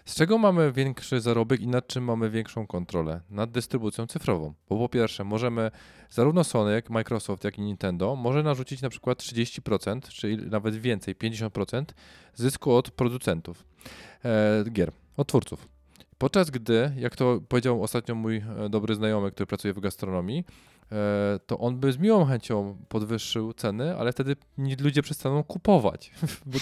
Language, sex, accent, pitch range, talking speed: Polish, male, native, 105-150 Hz, 155 wpm